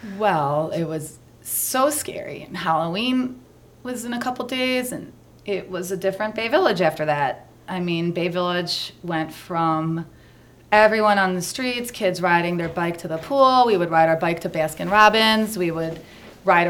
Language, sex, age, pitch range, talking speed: English, female, 30-49, 165-200 Hz, 175 wpm